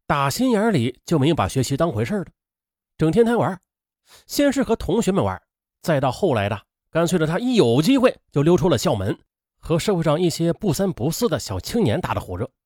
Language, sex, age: Chinese, male, 30-49